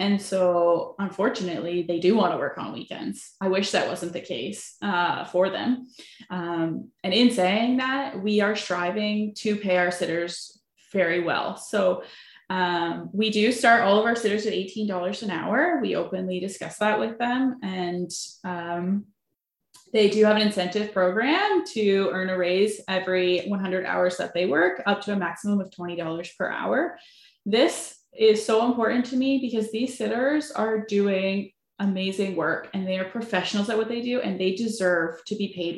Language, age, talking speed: English, 20-39, 180 wpm